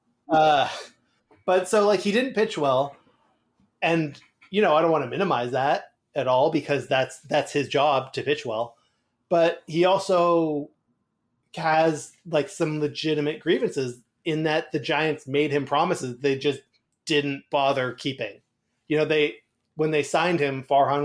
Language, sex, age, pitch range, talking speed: English, male, 20-39, 135-165 Hz, 155 wpm